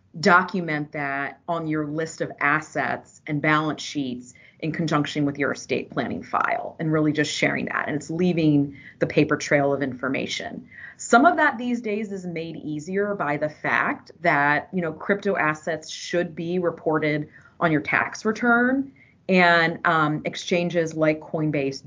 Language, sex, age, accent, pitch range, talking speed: English, female, 30-49, American, 145-170 Hz, 160 wpm